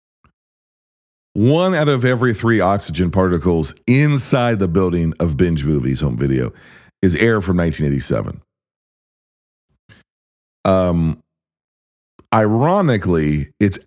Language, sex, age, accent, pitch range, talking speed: English, male, 40-59, American, 80-120 Hz, 95 wpm